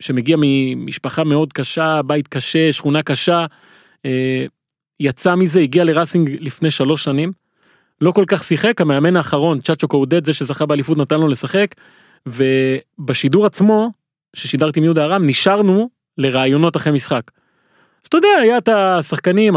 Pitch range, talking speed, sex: 145-185 Hz, 140 wpm, male